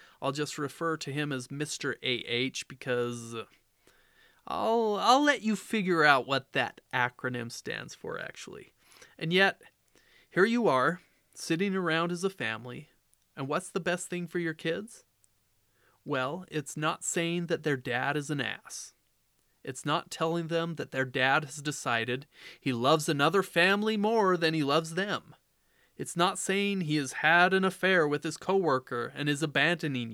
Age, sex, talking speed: 30-49, male, 160 wpm